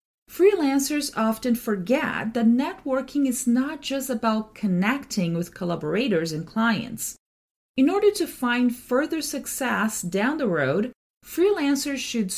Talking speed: 120 wpm